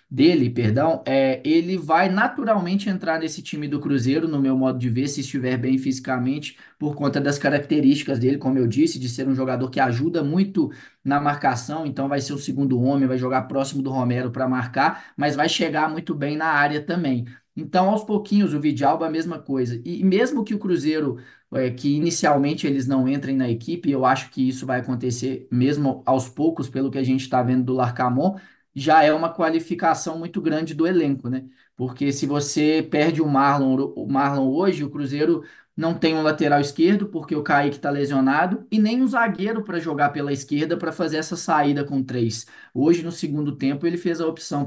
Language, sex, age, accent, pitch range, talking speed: Portuguese, male, 20-39, Brazilian, 130-160 Hz, 195 wpm